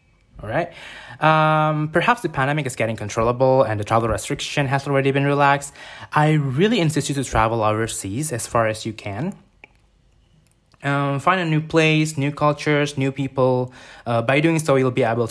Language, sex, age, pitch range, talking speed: Indonesian, male, 20-39, 110-150 Hz, 175 wpm